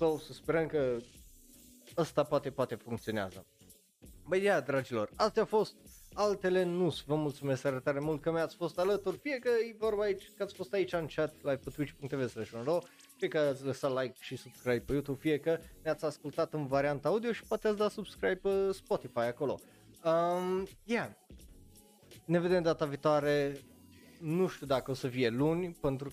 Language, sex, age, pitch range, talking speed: Romanian, male, 20-39, 130-190 Hz, 175 wpm